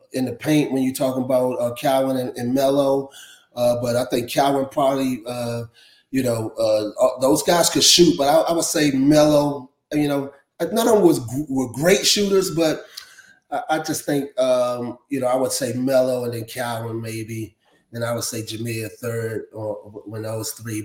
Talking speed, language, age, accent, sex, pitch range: 195 wpm, English, 30-49, American, male, 115-135 Hz